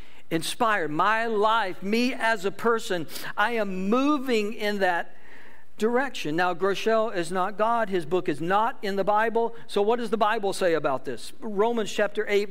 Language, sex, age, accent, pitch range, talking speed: English, male, 60-79, American, 185-245 Hz, 175 wpm